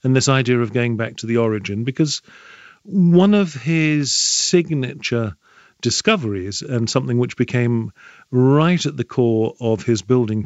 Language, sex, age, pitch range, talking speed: English, male, 50-69, 115-155 Hz, 150 wpm